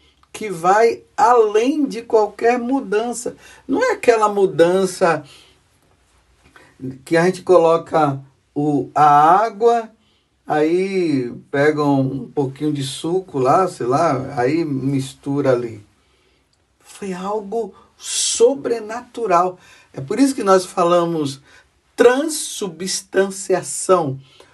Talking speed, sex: 95 wpm, male